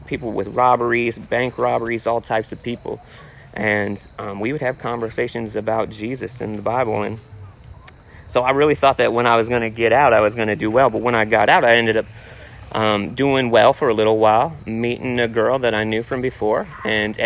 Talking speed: 220 wpm